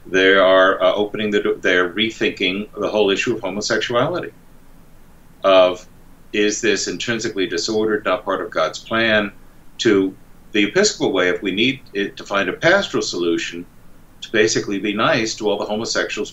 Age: 50-69